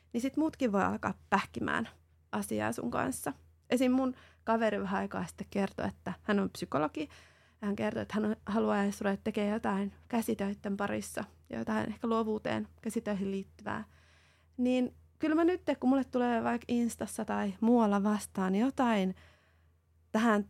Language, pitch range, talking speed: Finnish, 185-230 Hz, 145 wpm